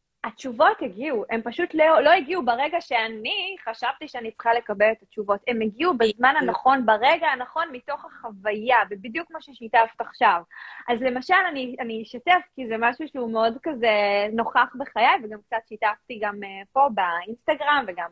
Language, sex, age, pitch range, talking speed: Hebrew, female, 20-39, 225-315 Hz, 150 wpm